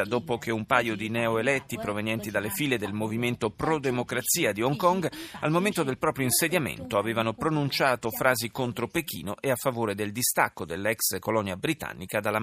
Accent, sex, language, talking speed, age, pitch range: native, male, Italian, 165 wpm, 40-59, 115-170 Hz